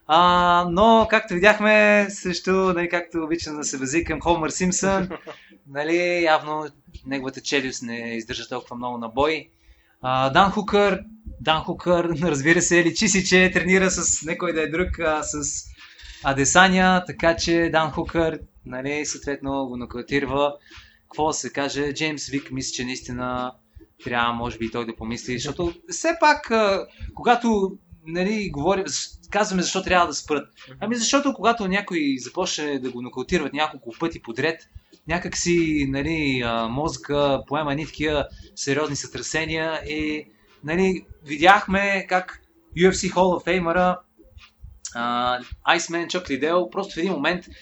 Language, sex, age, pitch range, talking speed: Bulgarian, male, 20-39, 140-190 Hz, 140 wpm